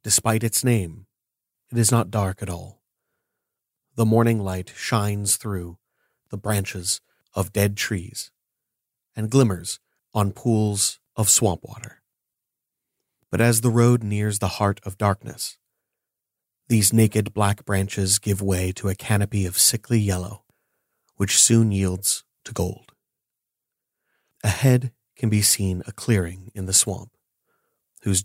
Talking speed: 130 wpm